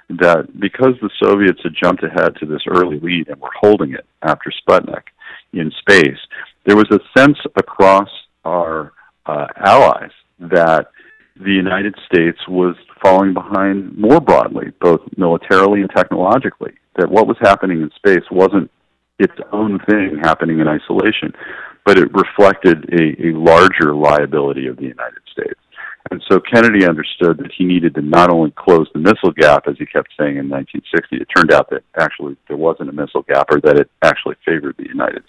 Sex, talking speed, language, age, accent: male, 170 wpm, English, 50-69, American